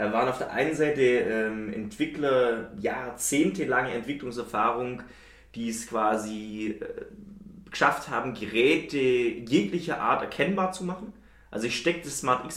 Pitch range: 115-170 Hz